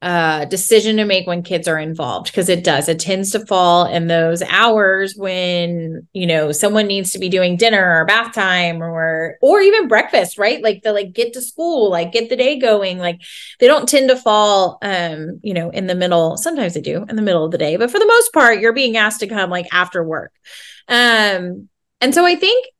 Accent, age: American, 20-39